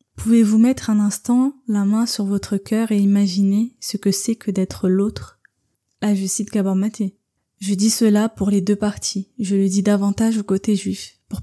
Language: French